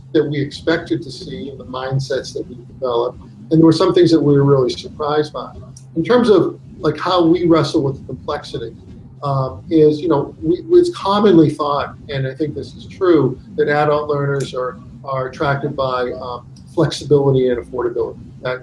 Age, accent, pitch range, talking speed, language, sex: 50-69, American, 130-160 Hz, 185 wpm, English, male